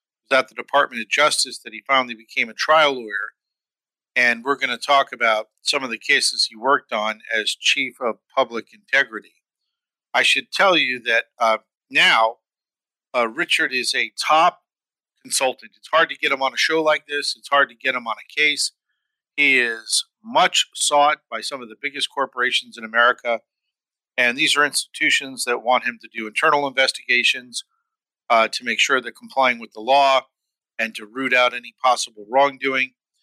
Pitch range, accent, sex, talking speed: 115-145 Hz, American, male, 180 wpm